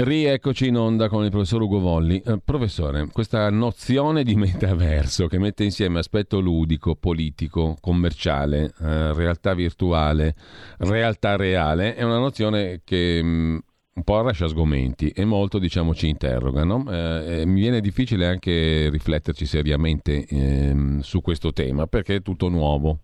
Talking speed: 140 wpm